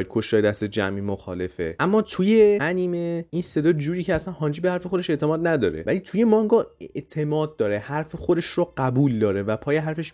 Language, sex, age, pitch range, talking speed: Persian, male, 30-49, 110-145 Hz, 190 wpm